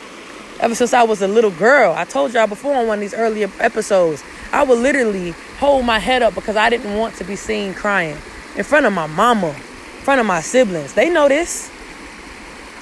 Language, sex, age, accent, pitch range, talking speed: English, female, 20-39, American, 190-245 Hz, 210 wpm